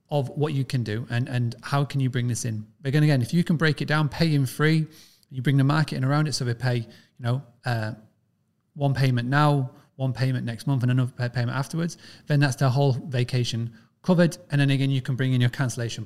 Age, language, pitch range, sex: 30-49, English, 120-155 Hz, male